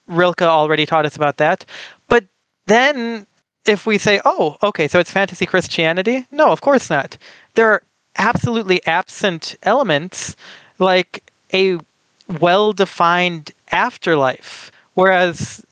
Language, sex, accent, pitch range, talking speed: English, male, American, 160-200 Hz, 120 wpm